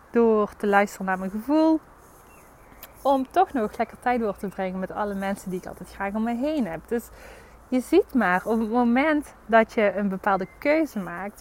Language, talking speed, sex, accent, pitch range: Dutch, 200 wpm, female, Dutch, 190-245 Hz